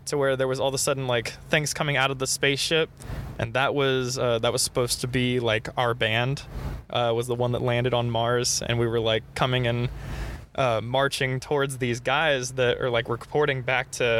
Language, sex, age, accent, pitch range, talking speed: English, male, 20-39, American, 120-150 Hz, 220 wpm